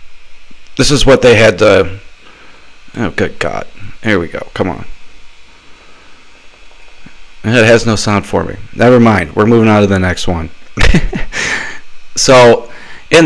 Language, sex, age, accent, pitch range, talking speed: English, male, 40-59, American, 105-140 Hz, 140 wpm